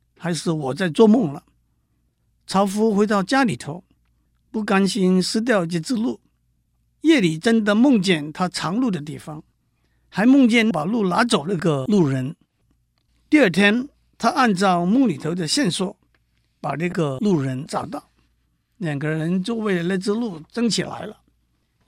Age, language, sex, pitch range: 50-69, Chinese, male, 150-225 Hz